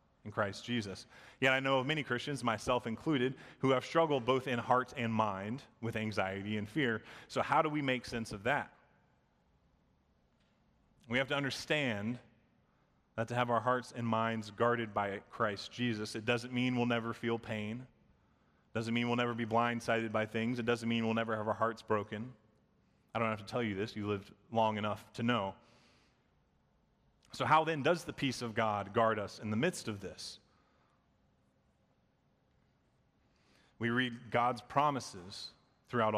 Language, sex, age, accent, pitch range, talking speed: English, male, 30-49, American, 105-125 Hz, 170 wpm